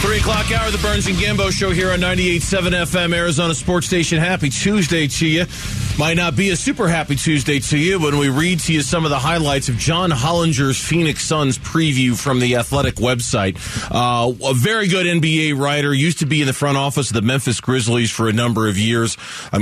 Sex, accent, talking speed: male, American, 215 wpm